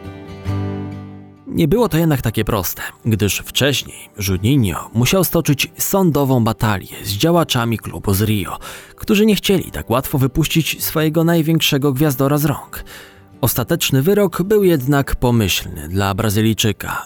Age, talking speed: 20-39, 125 wpm